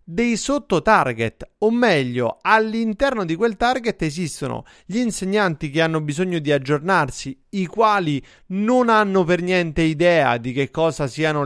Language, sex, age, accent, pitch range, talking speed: Italian, male, 30-49, native, 150-195 Hz, 140 wpm